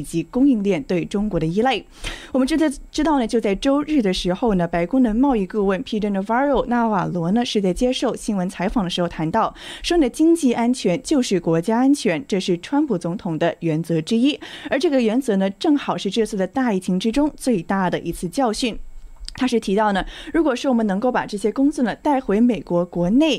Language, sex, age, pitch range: Chinese, female, 20-39, 185-260 Hz